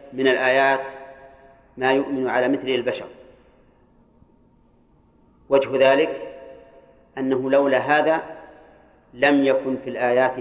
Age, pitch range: 40-59, 130-145 Hz